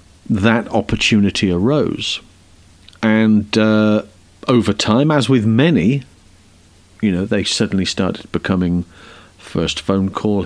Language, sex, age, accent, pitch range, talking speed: English, male, 50-69, British, 90-115 Hz, 110 wpm